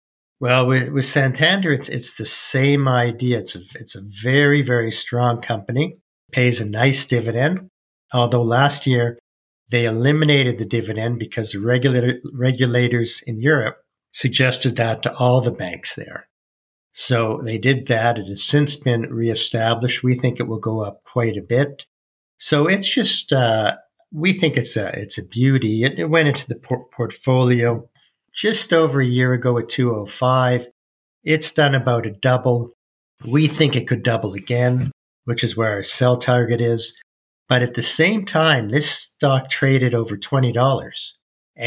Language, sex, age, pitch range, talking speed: English, male, 50-69, 115-135 Hz, 160 wpm